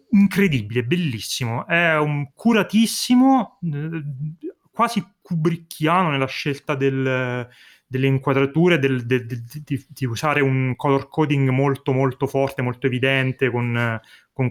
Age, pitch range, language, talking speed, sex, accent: 30-49, 125-160 Hz, Italian, 100 wpm, male, native